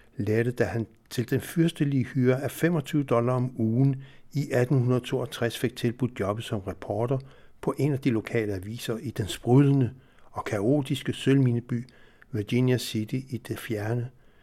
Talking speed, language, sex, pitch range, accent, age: 150 wpm, Danish, male, 105-130 Hz, native, 60-79